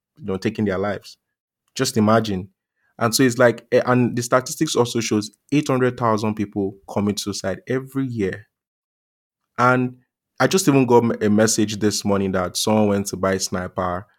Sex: male